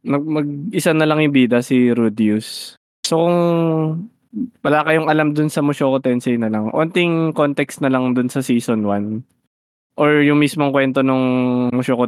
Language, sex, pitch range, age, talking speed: Filipino, male, 125-155 Hz, 20-39, 165 wpm